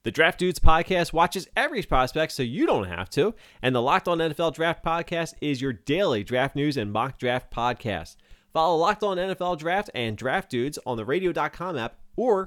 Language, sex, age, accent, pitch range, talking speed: English, male, 30-49, American, 105-140 Hz, 195 wpm